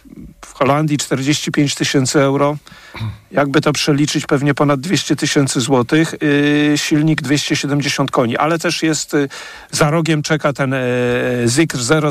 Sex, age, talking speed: male, 50-69, 120 wpm